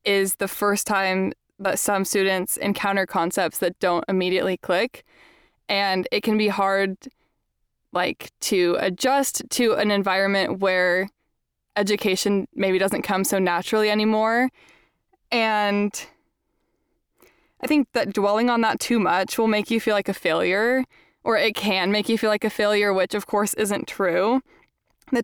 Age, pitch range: 20-39, 195-225 Hz